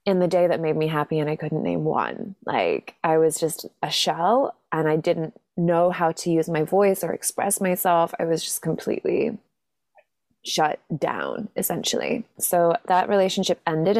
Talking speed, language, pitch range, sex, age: 175 wpm, English, 160-185 Hz, female, 20-39